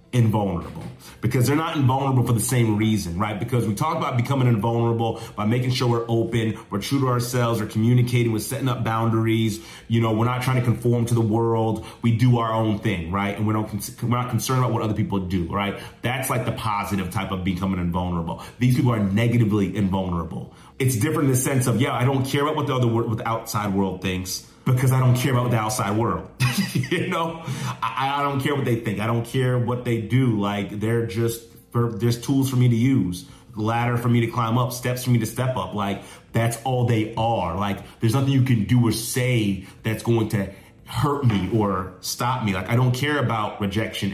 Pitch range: 105-125 Hz